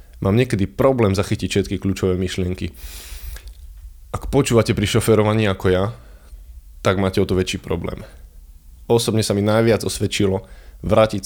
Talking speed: 135 wpm